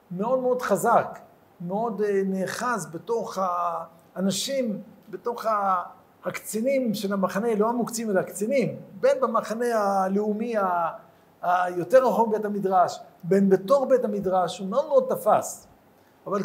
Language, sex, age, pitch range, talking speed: Hebrew, male, 50-69, 190-240 Hz, 115 wpm